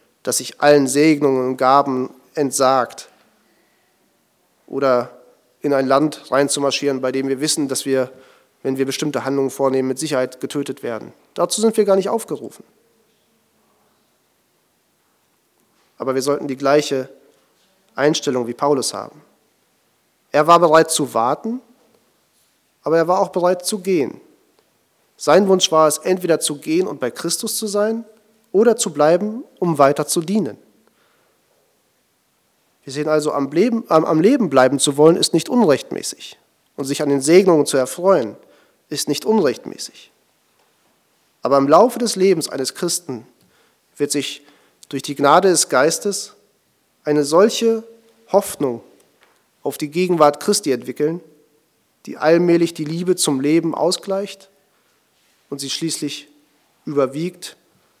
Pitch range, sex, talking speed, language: 140-185 Hz, male, 130 wpm, German